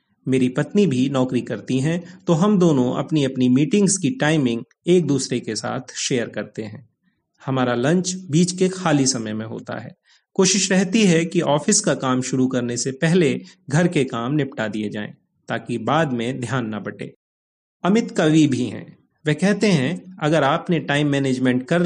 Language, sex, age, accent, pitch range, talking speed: Hindi, male, 30-49, native, 125-175 Hz, 180 wpm